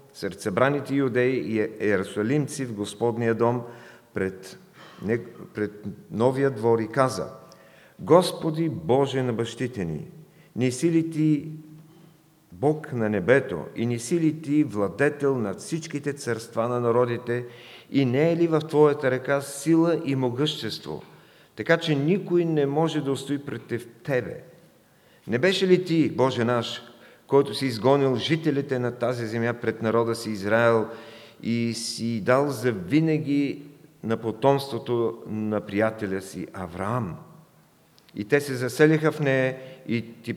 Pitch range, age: 115-150 Hz, 50-69